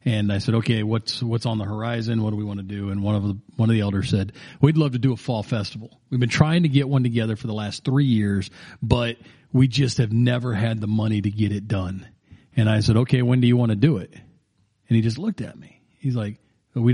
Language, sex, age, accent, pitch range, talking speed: English, male, 40-59, American, 105-135 Hz, 265 wpm